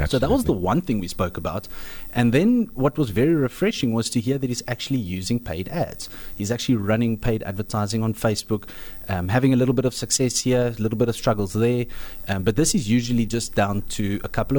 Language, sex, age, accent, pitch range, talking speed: English, male, 30-49, South African, 95-120 Hz, 225 wpm